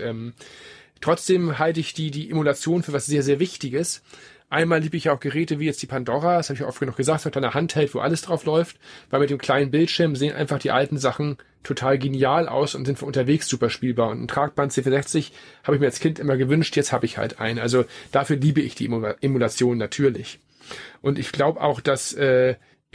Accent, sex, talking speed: German, male, 220 wpm